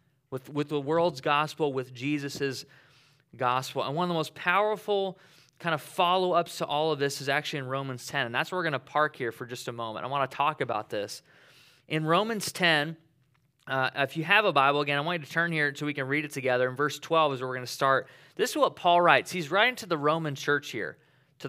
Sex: male